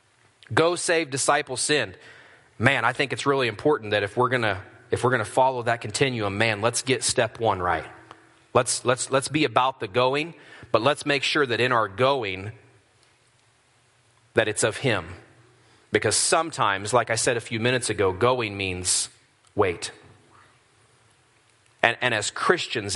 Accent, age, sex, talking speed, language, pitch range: American, 30-49, male, 155 wpm, English, 115-135 Hz